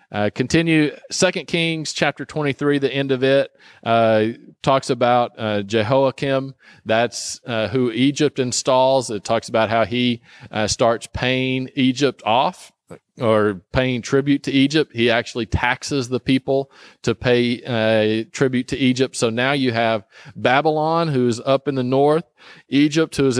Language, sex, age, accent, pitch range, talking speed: English, male, 40-59, American, 115-135 Hz, 155 wpm